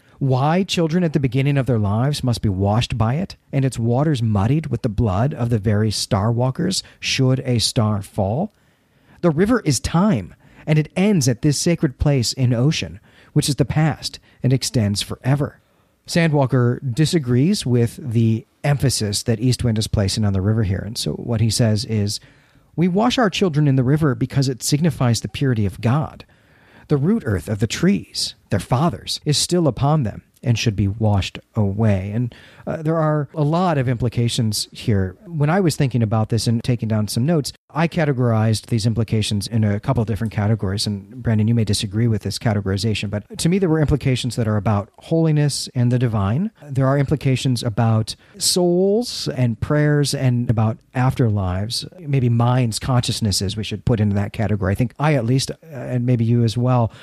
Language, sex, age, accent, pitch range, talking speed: English, male, 40-59, American, 110-145 Hz, 190 wpm